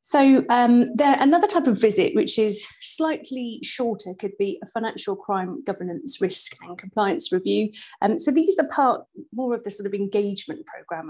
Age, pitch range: 30-49, 185-265 Hz